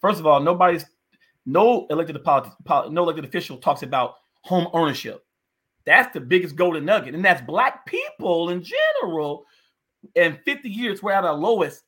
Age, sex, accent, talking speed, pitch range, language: 30-49, male, American, 165 wpm, 155-200 Hz, English